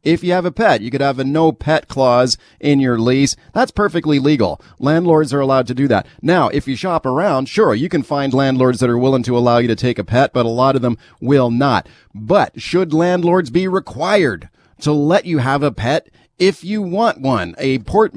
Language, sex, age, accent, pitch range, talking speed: English, male, 40-59, American, 130-165 Hz, 225 wpm